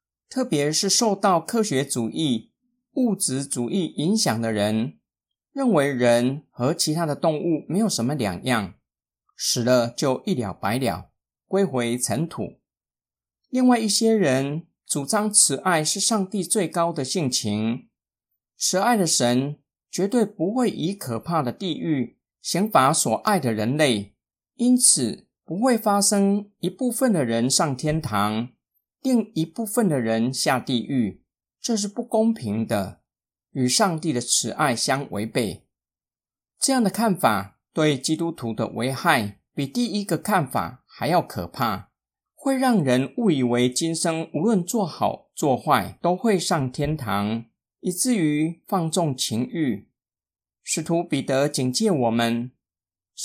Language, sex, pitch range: Chinese, male, 125-205 Hz